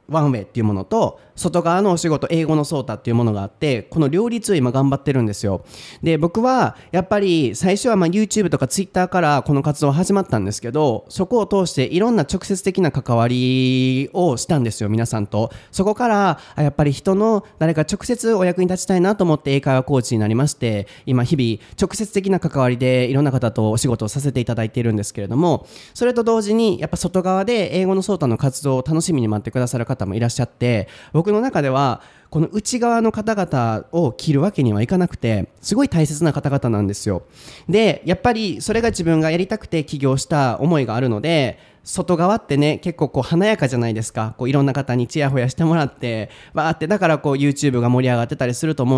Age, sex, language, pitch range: 30-49, male, Japanese, 125-185 Hz